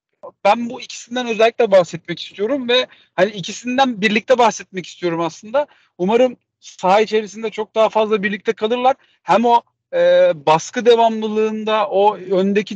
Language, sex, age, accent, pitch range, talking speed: Turkish, male, 40-59, native, 175-235 Hz, 130 wpm